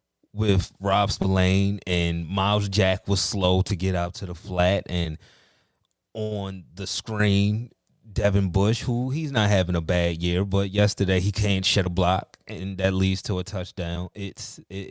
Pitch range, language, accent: 85-105 Hz, English, American